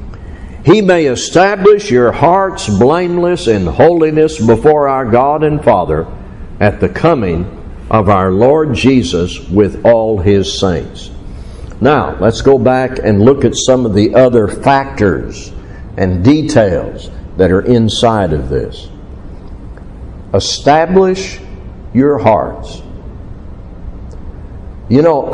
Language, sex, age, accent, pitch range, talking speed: English, male, 60-79, American, 100-150 Hz, 115 wpm